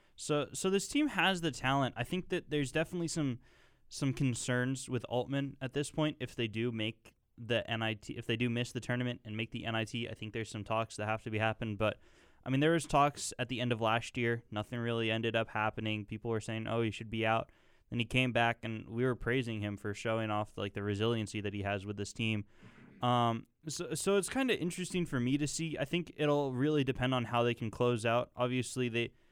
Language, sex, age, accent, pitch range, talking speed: English, male, 10-29, American, 110-130 Hz, 235 wpm